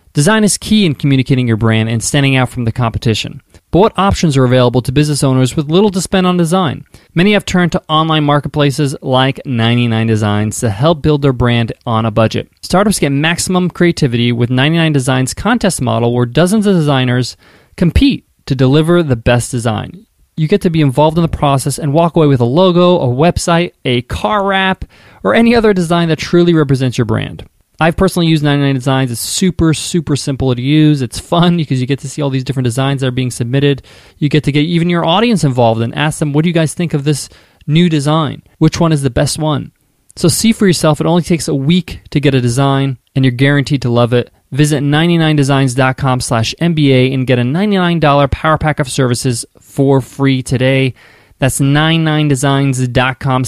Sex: male